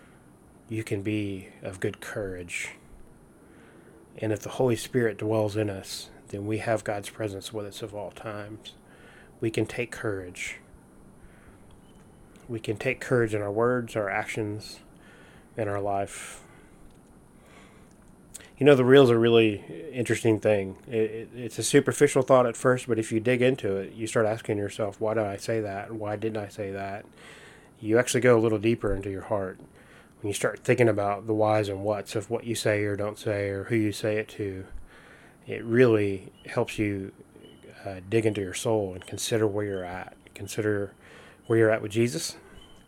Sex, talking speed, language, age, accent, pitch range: male, 175 wpm, English, 30-49, American, 100-115 Hz